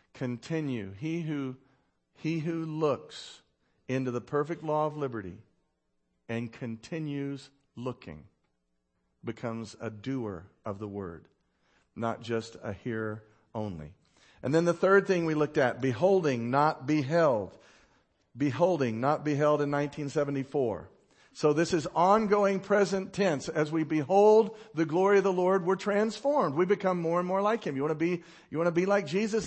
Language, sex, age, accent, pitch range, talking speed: English, male, 50-69, American, 130-205 Hz, 155 wpm